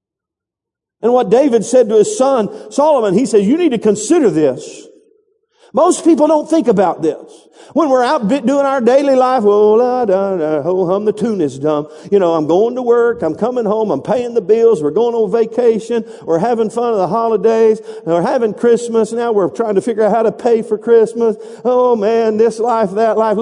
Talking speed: 215 wpm